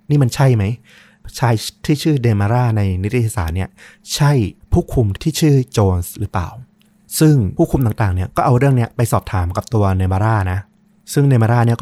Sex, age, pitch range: male, 20-39, 100-130 Hz